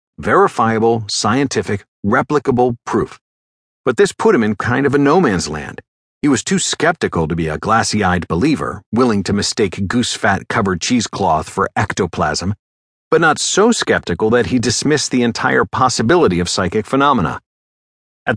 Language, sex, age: English, male, 50-69